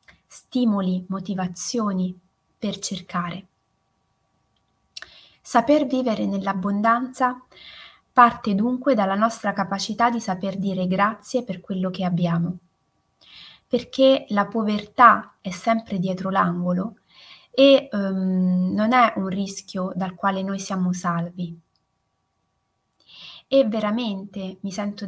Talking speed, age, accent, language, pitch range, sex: 100 wpm, 20-39, native, Italian, 180-220 Hz, female